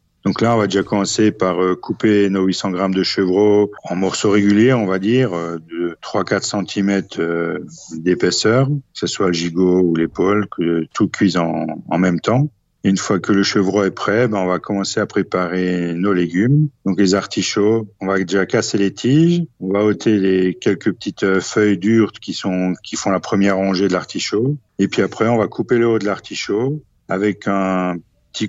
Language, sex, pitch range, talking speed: French, male, 90-105 Hz, 200 wpm